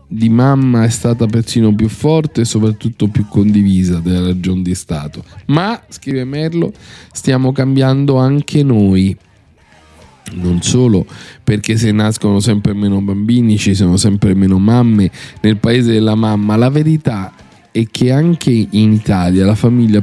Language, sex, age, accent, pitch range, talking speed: Italian, male, 40-59, native, 100-135 Hz, 145 wpm